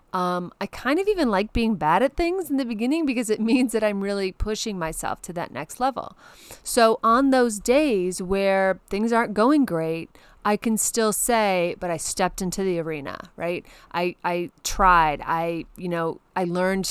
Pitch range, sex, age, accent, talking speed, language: 165-215 Hz, female, 30-49, American, 190 wpm, English